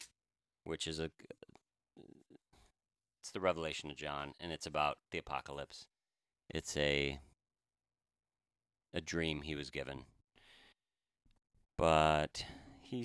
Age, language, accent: 40-59, English, American